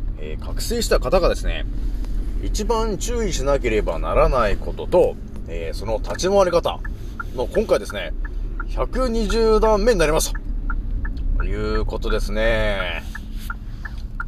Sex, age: male, 30-49